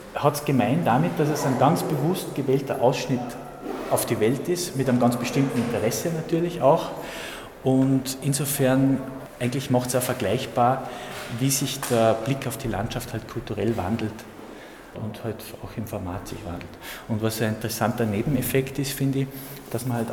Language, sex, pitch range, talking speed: German, male, 115-145 Hz, 170 wpm